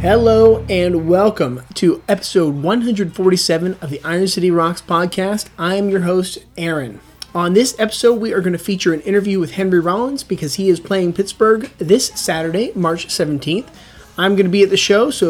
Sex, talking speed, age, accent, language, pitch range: male, 180 wpm, 30-49, American, English, 165-200 Hz